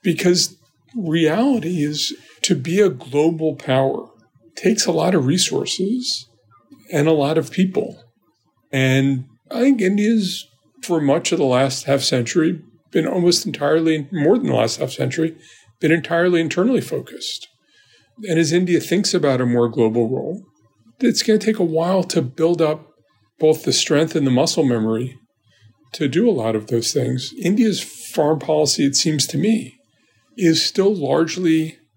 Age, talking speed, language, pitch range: 50-69, 160 wpm, English, 120-170 Hz